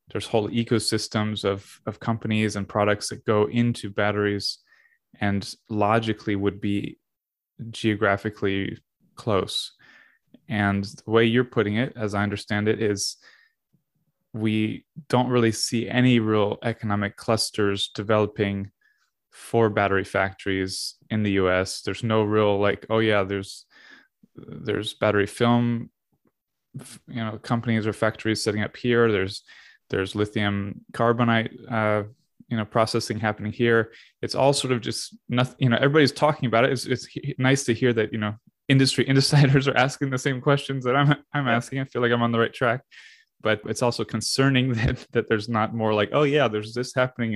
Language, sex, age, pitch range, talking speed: English, male, 20-39, 105-125 Hz, 160 wpm